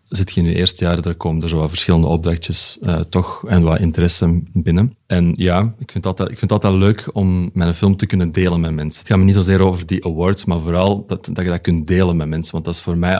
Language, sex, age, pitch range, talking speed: Dutch, male, 30-49, 85-95 Hz, 270 wpm